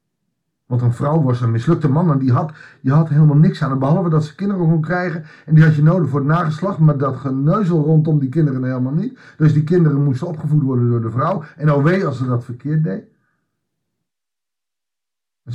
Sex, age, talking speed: male, 50-69, 205 wpm